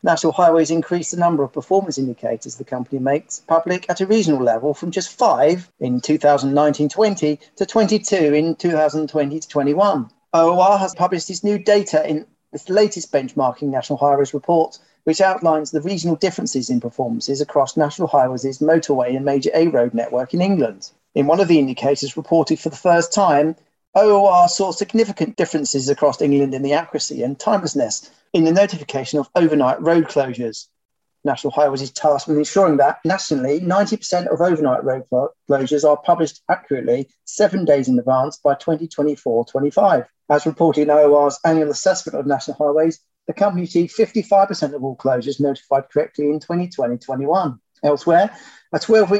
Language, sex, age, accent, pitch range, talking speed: English, male, 40-59, British, 140-175 Hz, 155 wpm